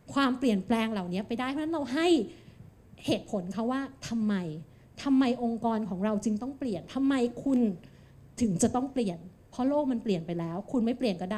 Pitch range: 205-260 Hz